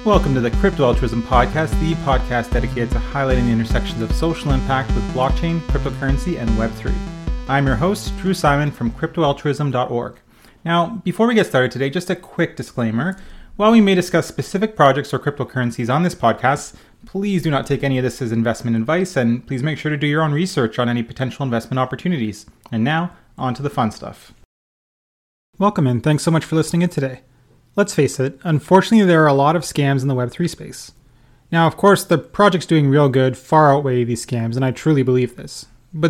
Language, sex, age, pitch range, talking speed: English, male, 30-49, 125-165 Hz, 200 wpm